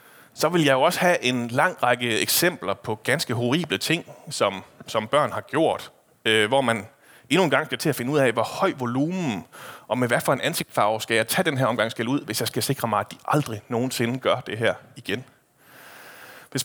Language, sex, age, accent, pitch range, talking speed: Danish, male, 30-49, native, 120-165 Hz, 220 wpm